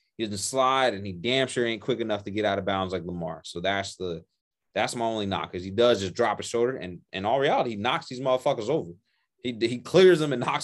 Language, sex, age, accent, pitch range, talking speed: English, male, 20-39, American, 100-130 Hz, 260 wpm